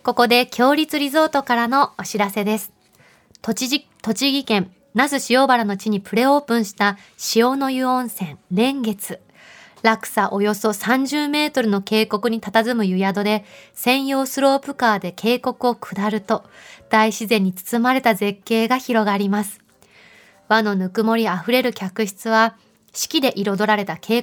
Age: 20-39